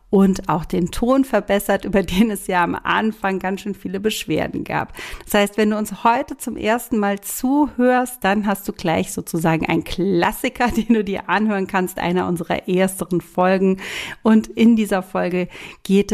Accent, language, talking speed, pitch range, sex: German, German, 175 wpm, 185-220 Hz, female